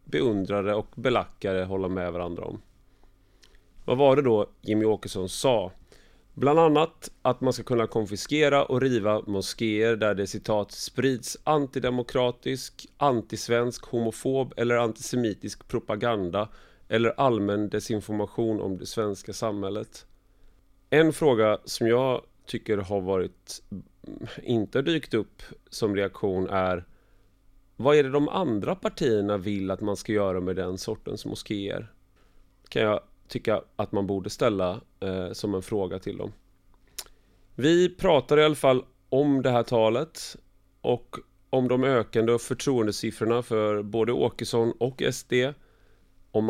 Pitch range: 95-125 Hz